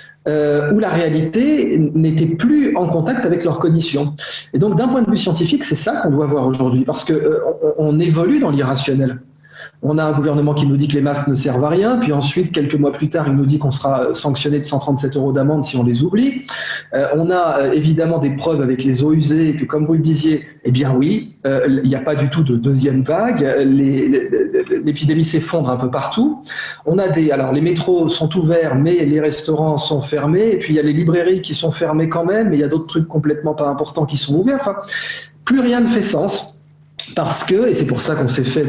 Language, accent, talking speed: French, French, 235 wpm